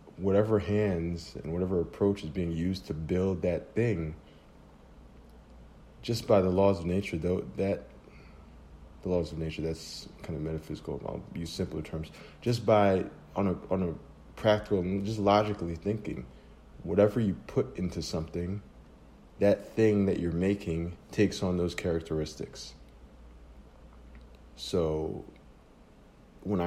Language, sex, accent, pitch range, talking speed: English, male, American, 75-90 Hz, 130 wpm